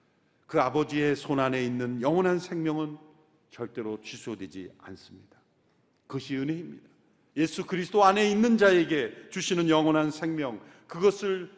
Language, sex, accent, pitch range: Korean, male, native, 120-170 Hz